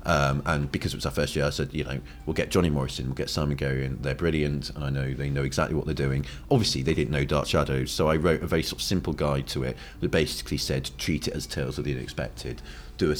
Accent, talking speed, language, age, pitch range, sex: British, 275 wpm, English, 40-59, 70-80 Hz, male